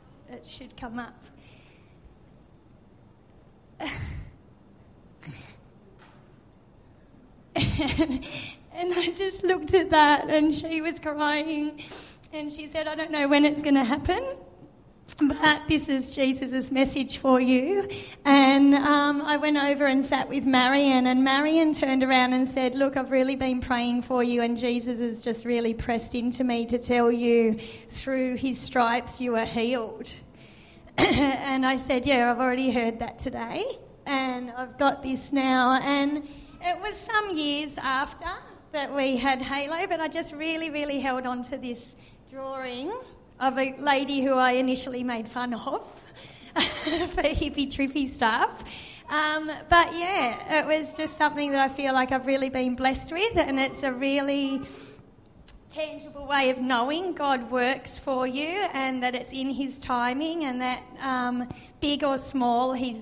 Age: 30-49